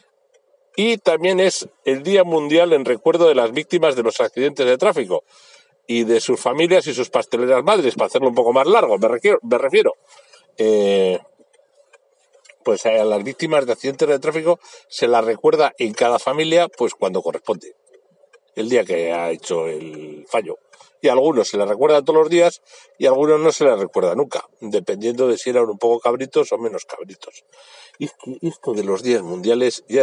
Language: Spanish